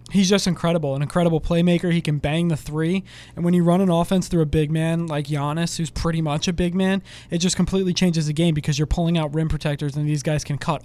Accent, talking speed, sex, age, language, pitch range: American, 255 wpm, male, 20-39, English, 155-185 Hz